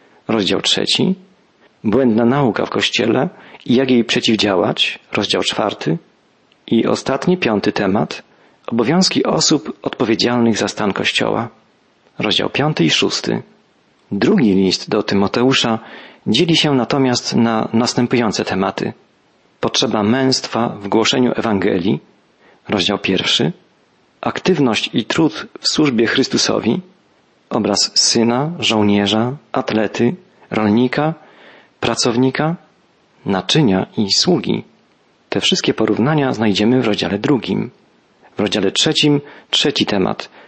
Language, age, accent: Polish, 40-59, native